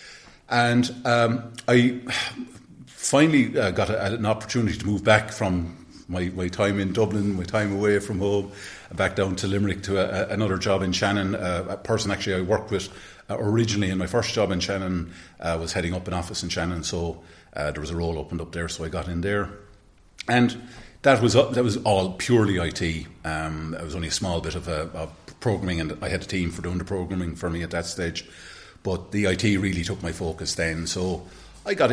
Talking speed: 220 wpm